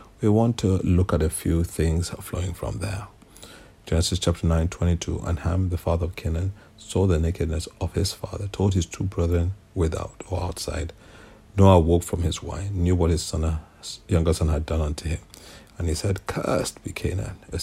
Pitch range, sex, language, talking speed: 85-100 Hz, male, English, 195 wpm